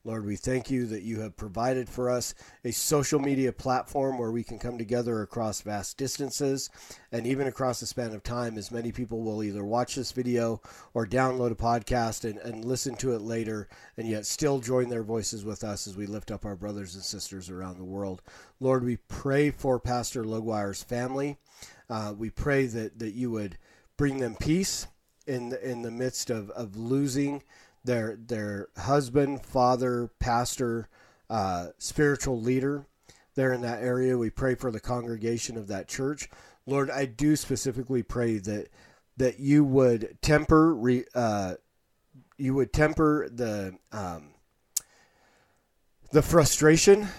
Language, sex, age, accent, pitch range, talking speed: English, male, 40-59, American, 110-135 Hz, 165 wpm